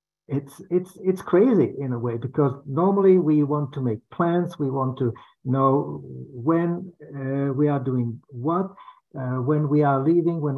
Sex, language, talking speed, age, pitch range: male, English, 170 wpm, 60-79, 130-170 Hz